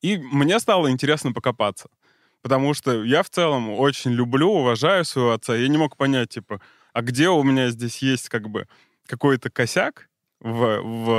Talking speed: 170 wpm